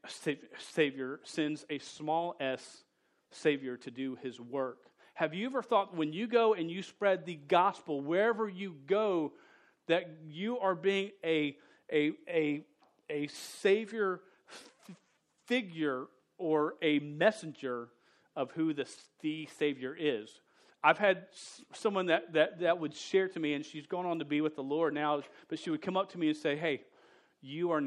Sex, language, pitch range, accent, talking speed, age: male, English, 145-195 Hz, American, 170 wpm, 40-59